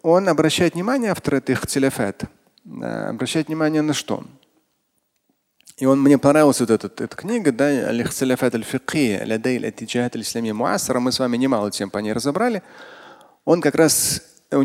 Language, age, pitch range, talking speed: Russian, 30-49, 115-165 Hz, 130 wpm